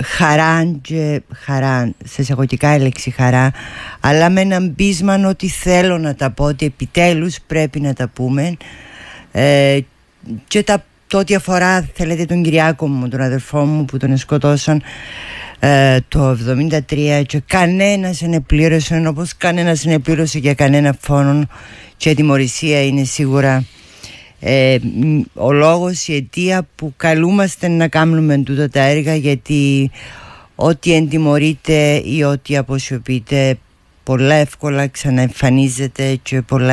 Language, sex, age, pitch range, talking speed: Greek, female, 50-69, 130-160 Hz, 125 wpm